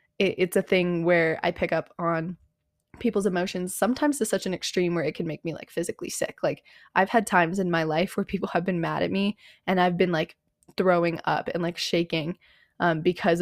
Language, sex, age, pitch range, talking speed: English, female, 20-39, 175-235 Hz, 215 wpm